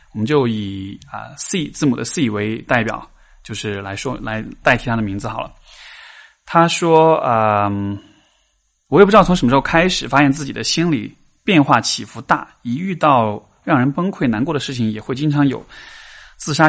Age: 20-39